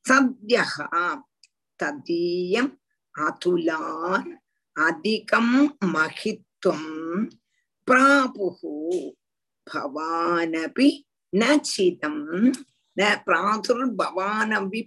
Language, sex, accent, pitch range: Tamil, female, native, 205-280 Hz